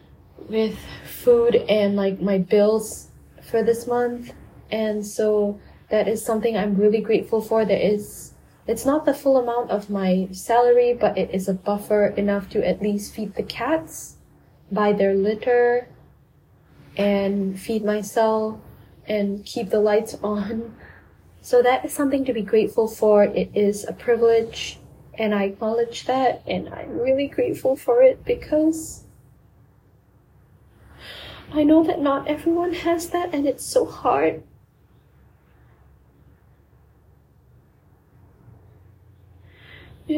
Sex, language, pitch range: female, English, 205-295 Hz